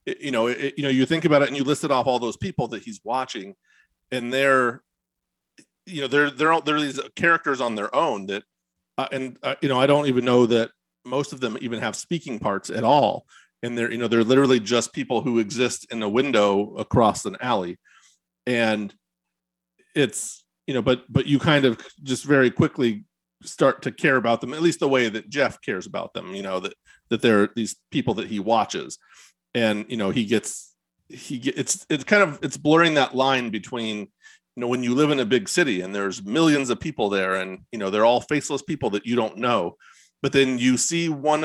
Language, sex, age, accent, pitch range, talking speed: English, male, 40-59, American, 110-140 Hz, 220 wpm